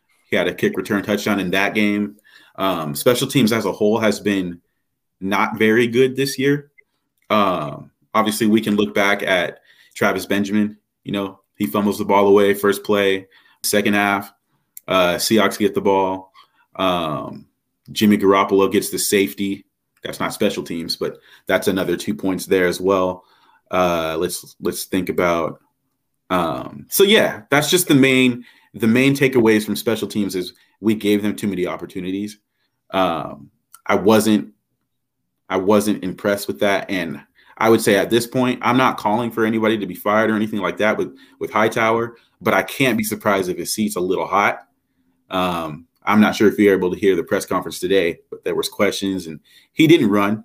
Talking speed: 180 wpm